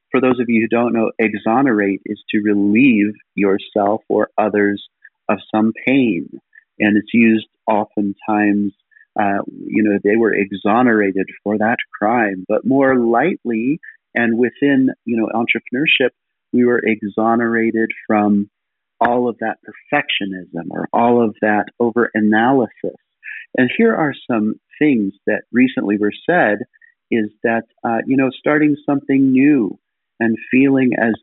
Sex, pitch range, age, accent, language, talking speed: male, 105-125 Hz, 40-59, American, English, 140 wpm